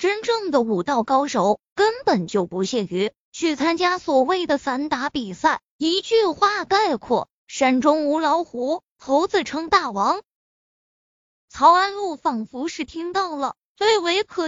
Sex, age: female, 20-39